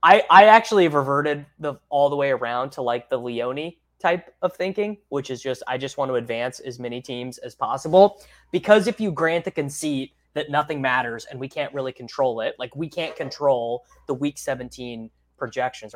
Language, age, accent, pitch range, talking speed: English, 20-39, American, 120-160 Hz, 195 wpm